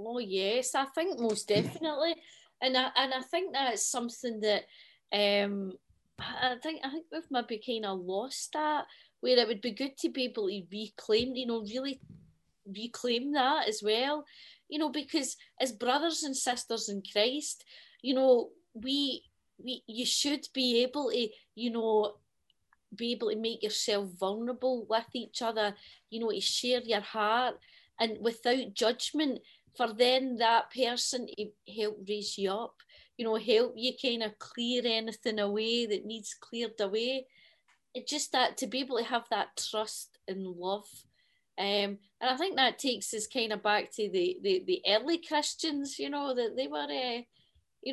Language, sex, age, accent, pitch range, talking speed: English, female, 20-39, British, 215-260 Hz, 170 wpm